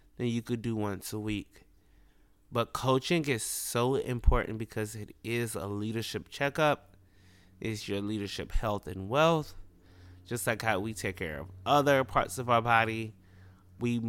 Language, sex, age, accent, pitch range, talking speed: English, male, 20-39, American, 95-120 Hz, 160 wpm